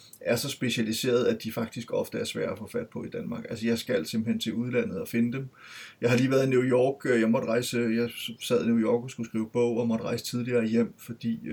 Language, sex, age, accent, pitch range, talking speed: Danish, male, 30-49, native, 115-135 Hz, 255 wpm